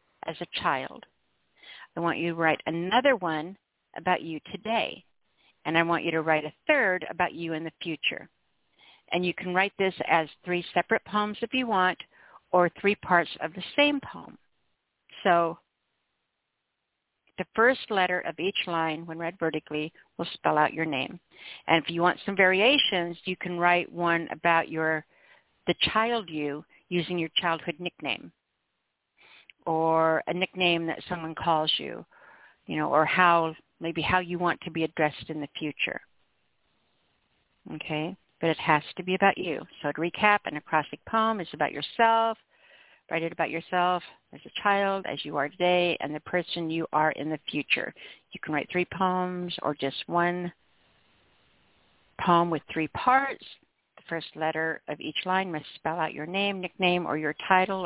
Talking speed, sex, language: 170 wpm, female, English